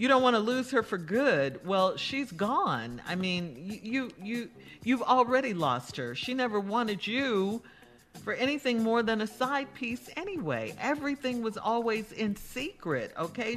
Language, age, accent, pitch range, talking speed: English, 50-69, American, 175-240 Hz, 170 wpm